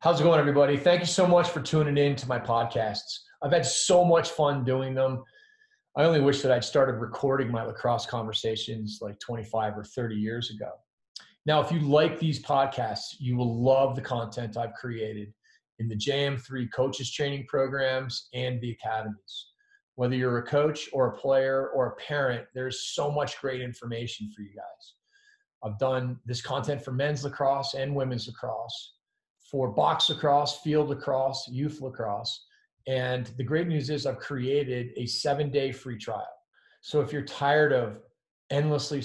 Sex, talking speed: male, 170 wpm